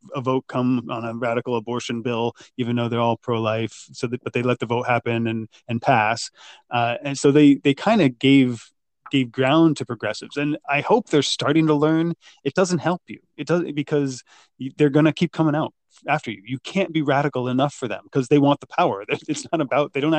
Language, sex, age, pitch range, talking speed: English, male, 20-39, 120-150 Hz, 225 wpm